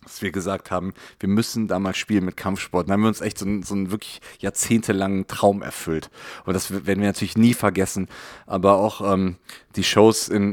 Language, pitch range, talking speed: German, 100-120 Hz, 205 wpm